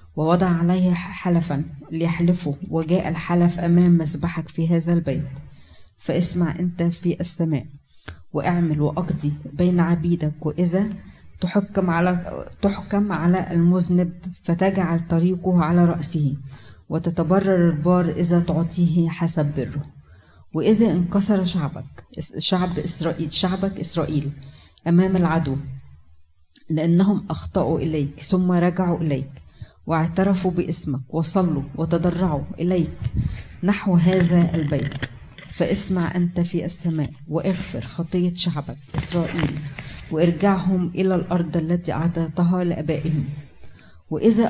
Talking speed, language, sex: 100 wpm, Arabic, female